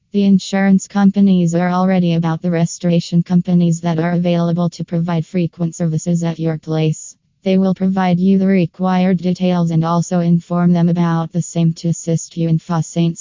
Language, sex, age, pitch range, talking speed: English, female, 20-39, 165-180 Hz, 175 wpm